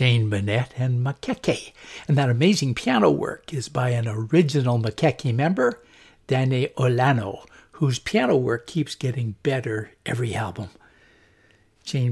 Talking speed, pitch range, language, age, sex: 130 wpm, 115-140 Hz, English, 60-79, male